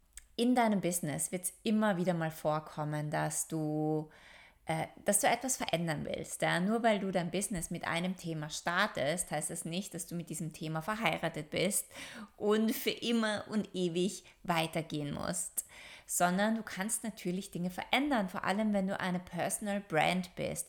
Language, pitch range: German, 170-215 Hz